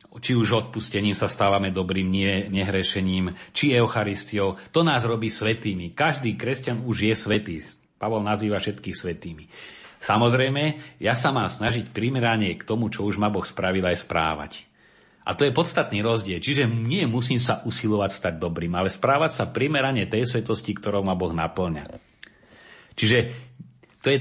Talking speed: 155 wpm